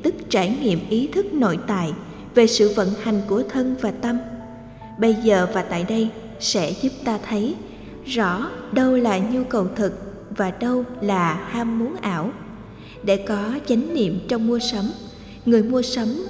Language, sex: Vietnamese, female